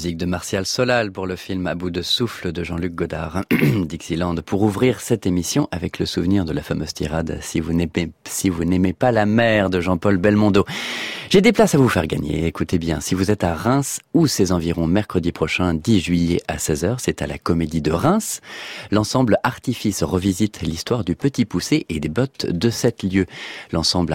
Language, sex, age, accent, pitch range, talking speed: French, male, 30-49, French, 80-110 Hz, 205 wpm